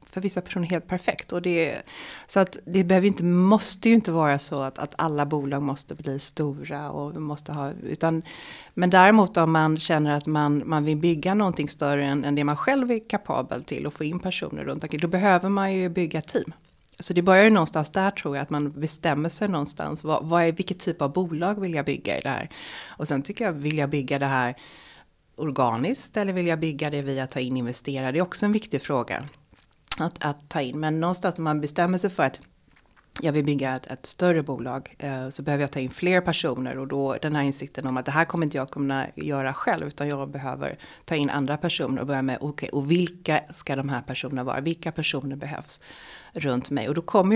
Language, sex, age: Swedish, female, 30-49